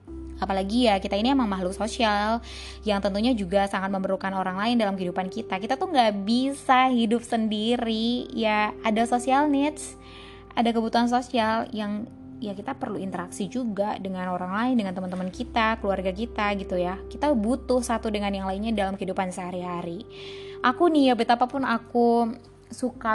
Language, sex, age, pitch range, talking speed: Indonesian, female, 20-39, 195-240 Hz, 160 wpm